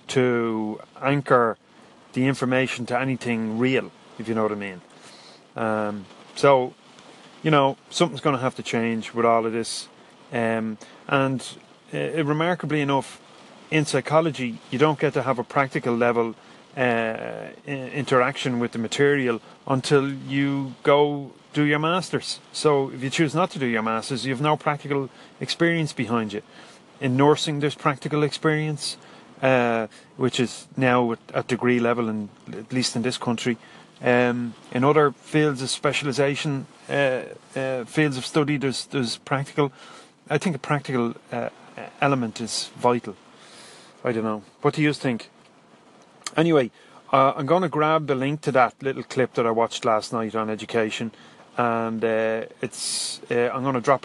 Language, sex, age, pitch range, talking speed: English, male, 30-49, 115-145 Hz, 160 wpm